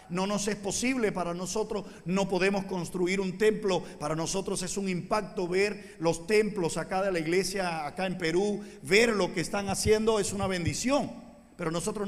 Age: 50-69